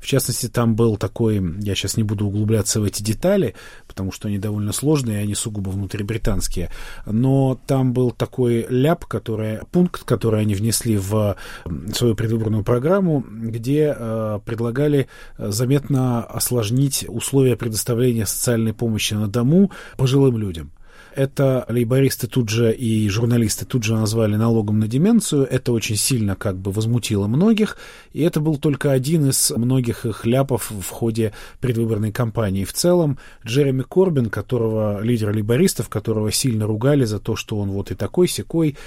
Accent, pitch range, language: native, 105-135 Hz, Russian